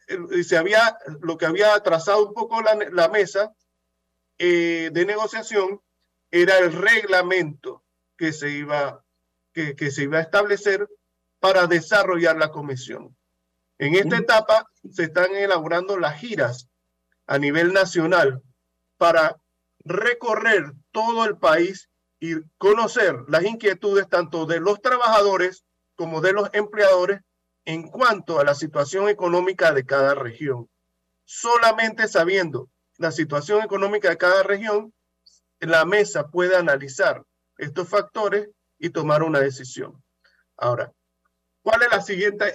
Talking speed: 125 wpm